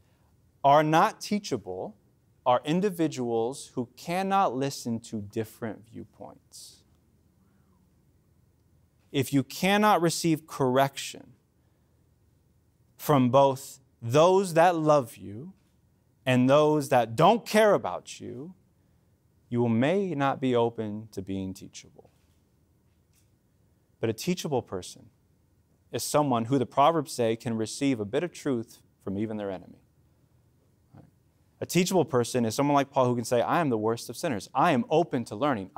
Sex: male